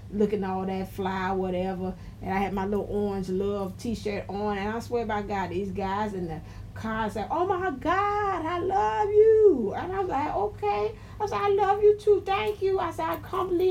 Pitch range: 205-280 Hz